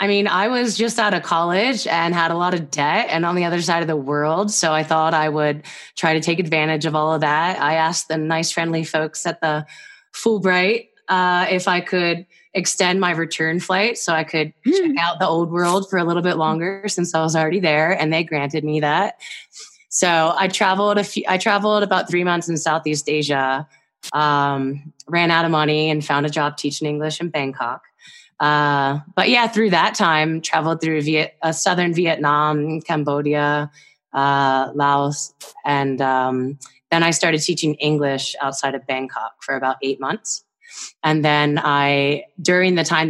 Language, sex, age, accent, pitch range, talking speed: English, female, 20-39, American, 150-180 Hz, 190 wpm